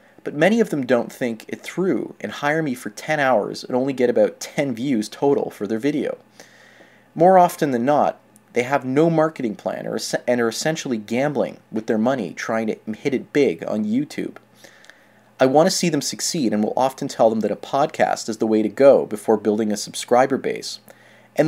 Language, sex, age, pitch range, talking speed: English, male, 30-49, 110-150 Hz, 200 wpm